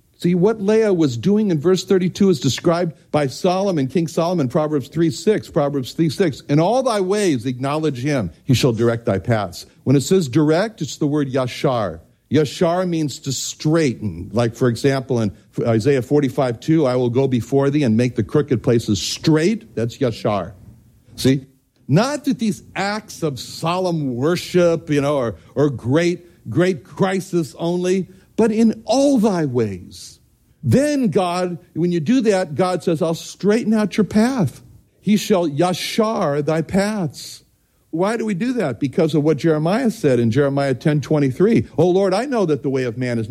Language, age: English, 60-79